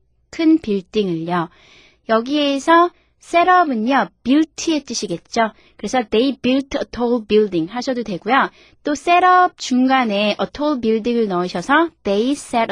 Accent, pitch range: native, 205-310 Hz